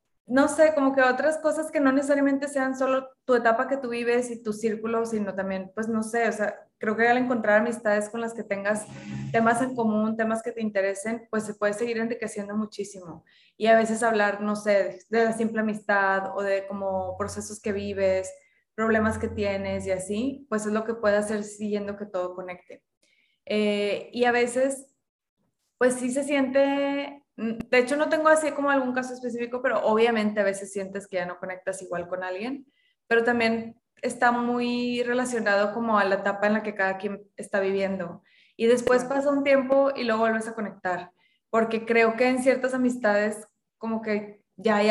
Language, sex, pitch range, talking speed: Spanish, female, 205-245 Hz, 190 wpm